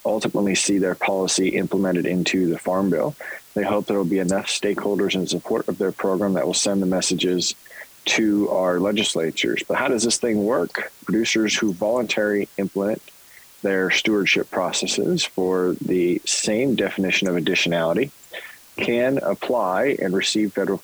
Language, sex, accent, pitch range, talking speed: English, male, American, 90-105 Hz, 155 wpm